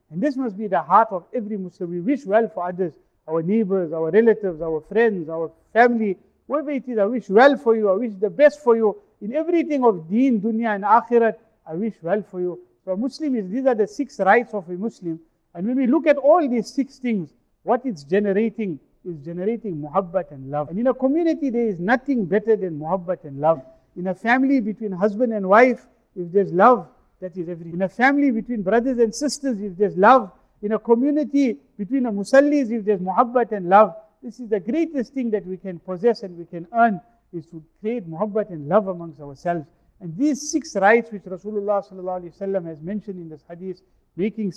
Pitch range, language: 185-235 Hz, English